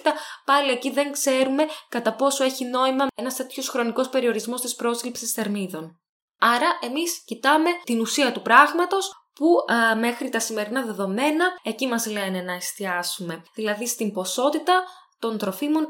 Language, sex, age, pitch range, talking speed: Greek, female, 10-29, 210-265 Hz, 145 wpm